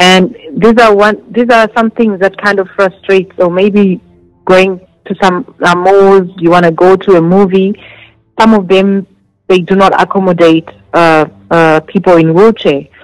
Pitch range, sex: 175-205 Hz, female